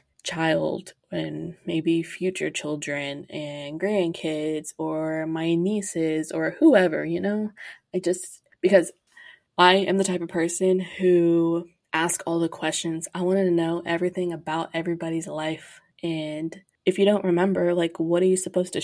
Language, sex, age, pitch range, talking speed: English, female, 20-39, 165-185 Hz, 150 wpm